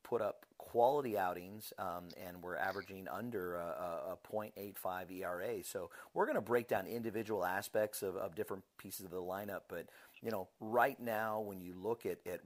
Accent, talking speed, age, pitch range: American, 180 wpm, 40-59, 95-110 Hz